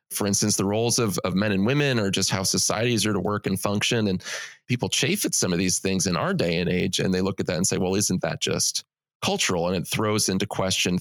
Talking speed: 260 wpm